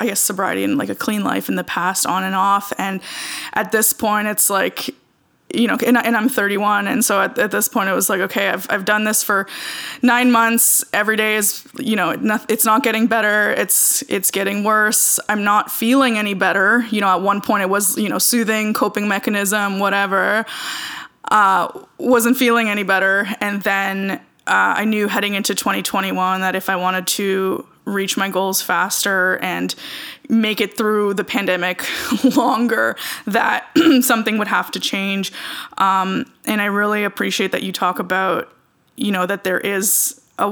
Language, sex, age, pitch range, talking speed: English, female, 20-39, 195-225 Hz, 185 wpm